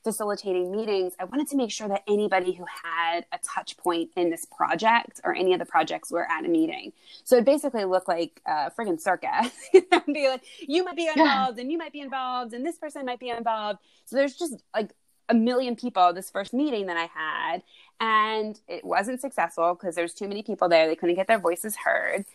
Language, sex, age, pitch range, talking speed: English, female, 20-39, 175-230 Hz, 215 wpm